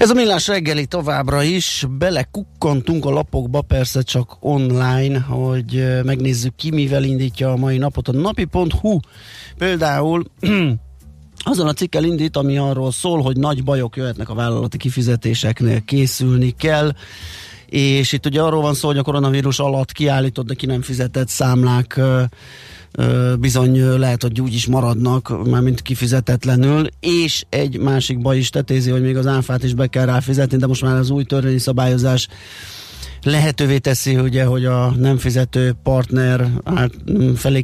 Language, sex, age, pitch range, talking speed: Hungarian, male, 30-49, 120-135 Hz, 150 wpm